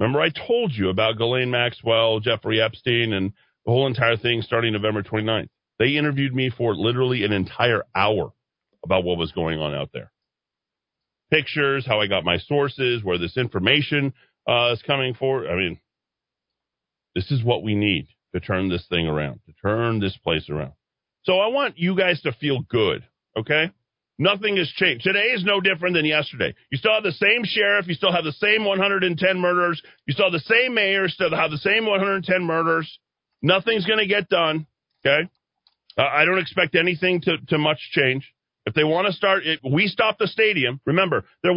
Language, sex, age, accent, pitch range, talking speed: English, male, 40-59, American, 115-195 Hz, 190 wpm